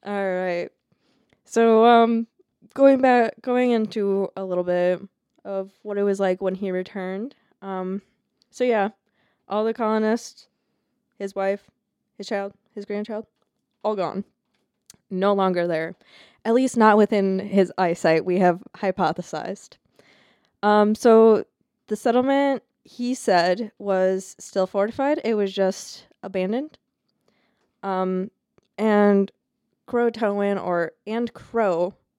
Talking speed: 115 wpm